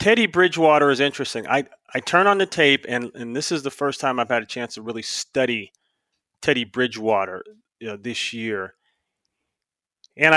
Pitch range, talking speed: 120-170 Hz, 180 wpm